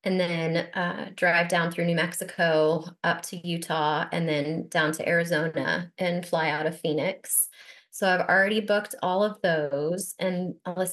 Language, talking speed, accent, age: English, 165 wpm, American, 20-39